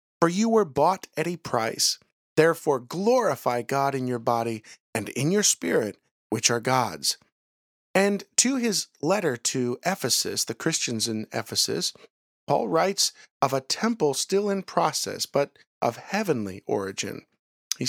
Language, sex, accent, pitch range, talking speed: English, male, American, 125-190 Hz, 145 wpm